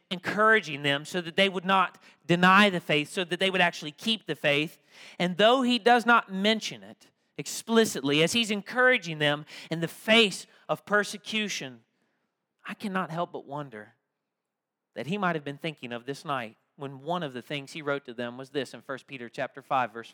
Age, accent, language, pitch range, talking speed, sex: 40-59, American, English, 160-230 Hz, 195 wpm, male